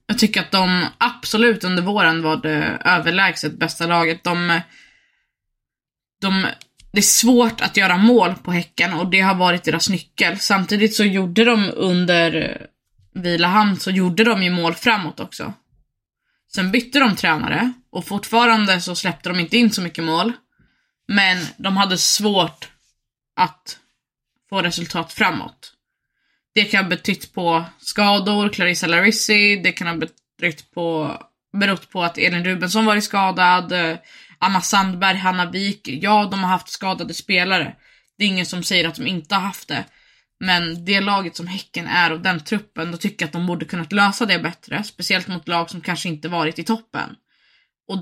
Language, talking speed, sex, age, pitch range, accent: Swedish, 165 wpm, female, 20-39, 170-205 Hz, native